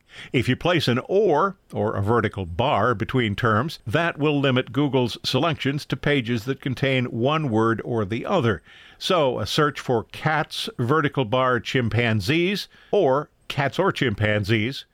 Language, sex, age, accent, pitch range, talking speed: English, male, 50-69, American, 115-150 Hz, 150 wpm